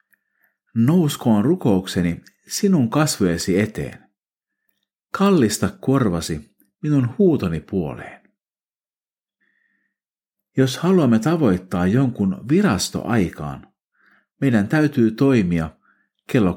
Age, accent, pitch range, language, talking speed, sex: 50-69, native, 90-140 Hz, Finnish, 70 wpm, male